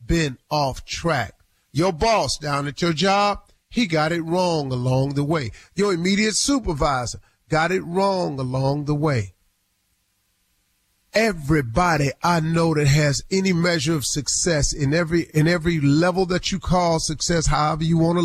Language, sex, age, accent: English, male, 40-59, American